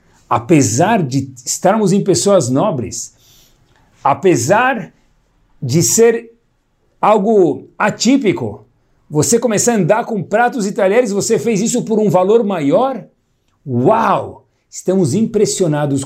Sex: male